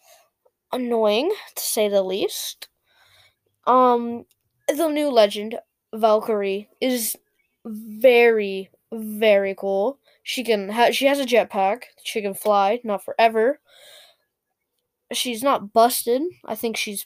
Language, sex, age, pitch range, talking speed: English, female, 10-29, 205-265 Hz, 115 wpm